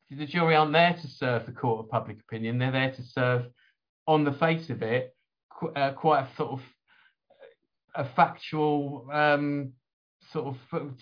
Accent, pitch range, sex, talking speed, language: British, 125-145 Hz, male, 150 wpm, English